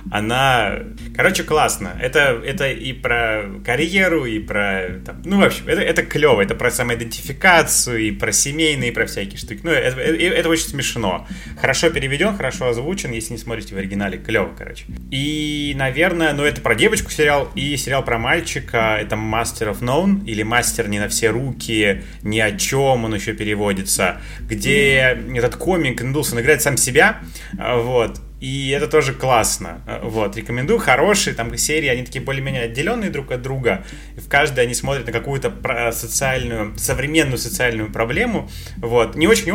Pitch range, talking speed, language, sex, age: 110-145 Hz, 160 wpm, Russian, male, 20-39